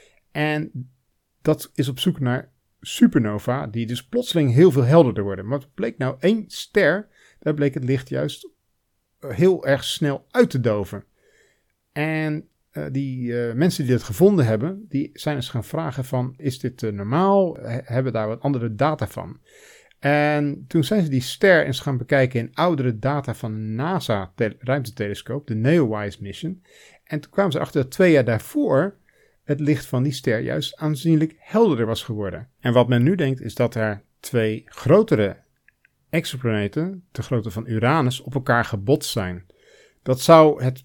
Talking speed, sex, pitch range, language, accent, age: 175 wpm, male, 115-150 Hz, Dutch, Dutch, 50-69